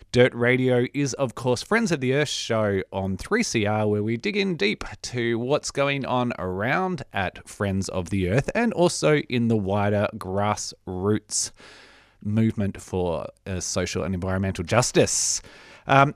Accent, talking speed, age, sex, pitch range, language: Australian, 150 wpm, 20-39, male, 110-150 Hz, English